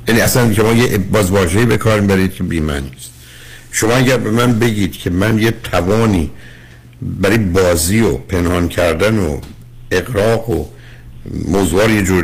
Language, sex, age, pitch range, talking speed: Persian, male, 60-79, 85-120 Hz, 150 wpm